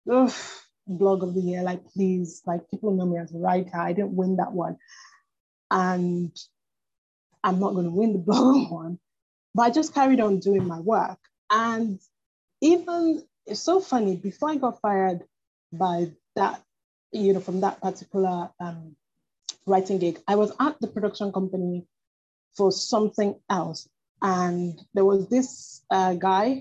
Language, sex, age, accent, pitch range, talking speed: English, female, 20-39, Nigerian, 185-230 Hz, 160 wpm